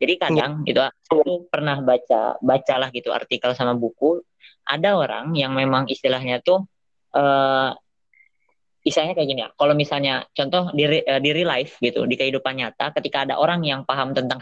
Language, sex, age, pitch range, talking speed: Indonesian, female, 20-39, 130-160 Hz, 160 wpm